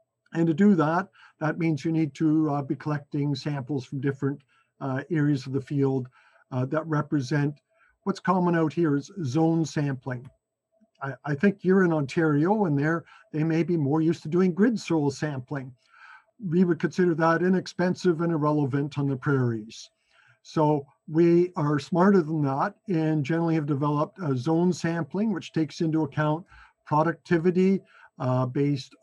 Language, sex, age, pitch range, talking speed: English, male, 50-69, 140-170 Hz, 160 wpm